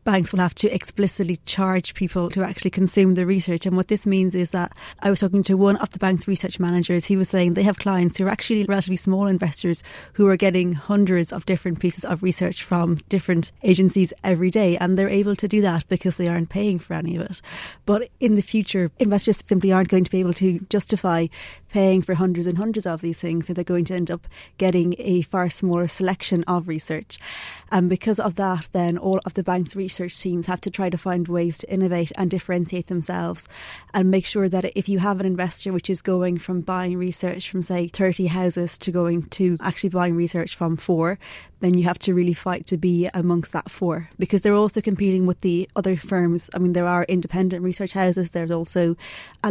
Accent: British